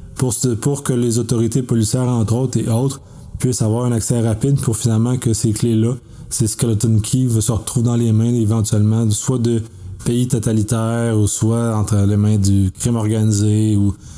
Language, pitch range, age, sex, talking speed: French, 110-125 Hz, 30-49, male, 180 wpm